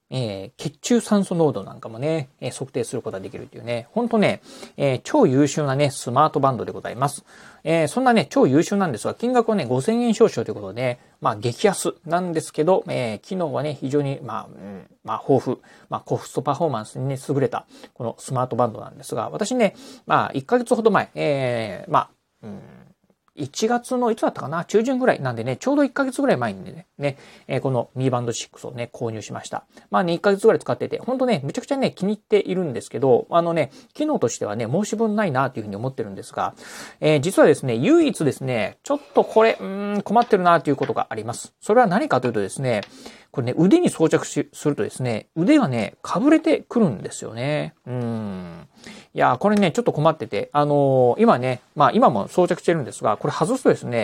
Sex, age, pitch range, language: male, 40-59, 130-210 Hz, Japanese